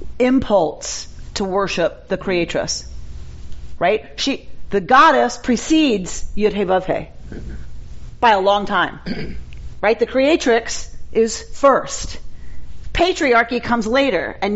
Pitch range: 190-250 Hz